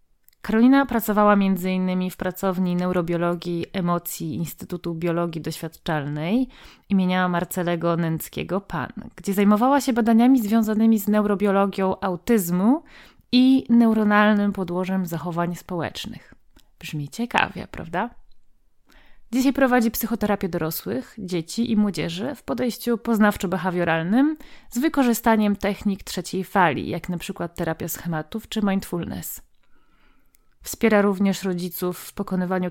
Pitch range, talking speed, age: 180-225 Hz, 100 wpm, 30-49